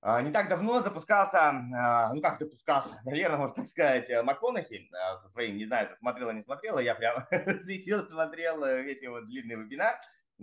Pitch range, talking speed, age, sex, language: 115-195 Hz, 160 wpm, 20-39, male, Russian